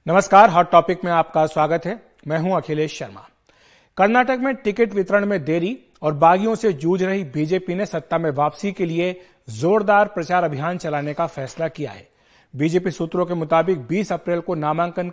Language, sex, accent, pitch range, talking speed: Hindi, male, native, 155-190 Hz, 185 wpm